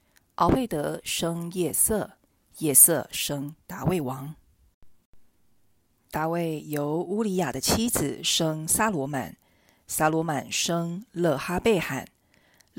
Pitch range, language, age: 150-185 Hz, Chinese, 50-69